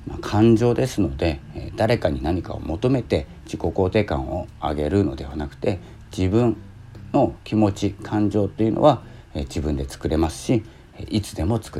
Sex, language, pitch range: male, Japanese, 75-105 Hz